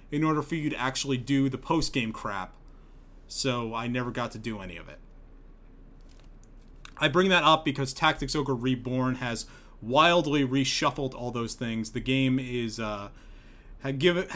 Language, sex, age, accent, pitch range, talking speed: English, male, 30-49, American, 120-150 Hz, 165 wpm